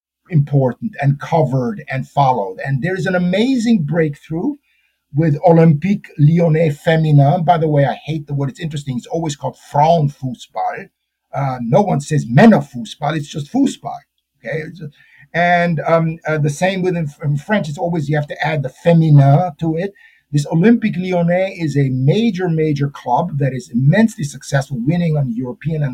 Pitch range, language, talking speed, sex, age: 140-175 Hz, English, 185 wpm, male, 50-69